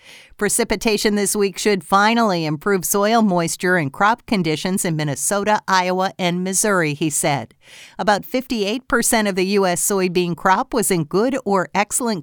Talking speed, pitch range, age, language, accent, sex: 150 wpm, 170-215 Hz, 50-69, English, American, female